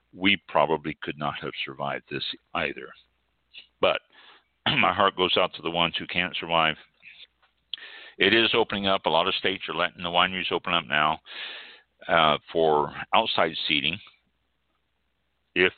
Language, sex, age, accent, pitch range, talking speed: English, male, 60-79, American, 75-95 Hz, 150 wpm